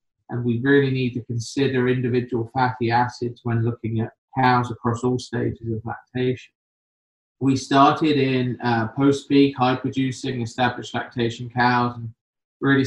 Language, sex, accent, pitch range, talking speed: English, male, British, 120-135 Hz, 140 wpm